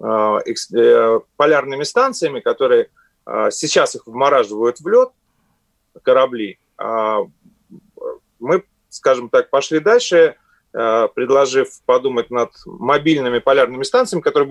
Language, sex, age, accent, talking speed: Russian, male, 30-49, native, 85 wpm